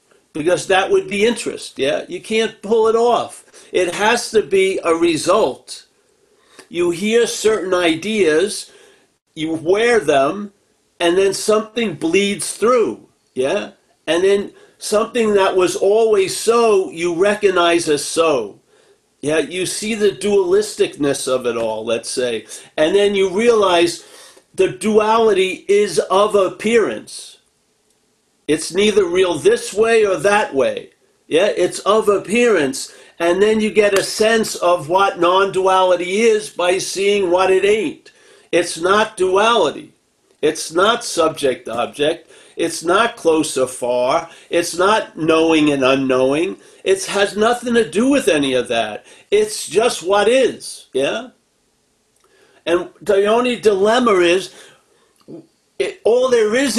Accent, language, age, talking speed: American, English, 50-69, 130 wpm